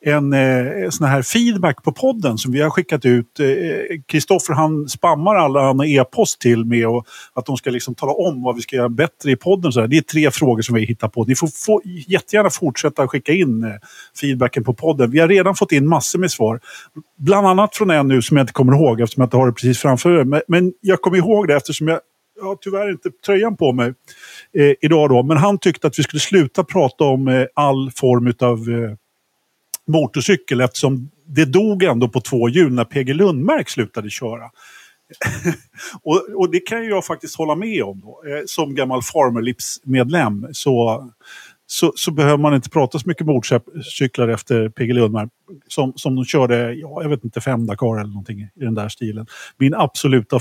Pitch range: 125-165 Hz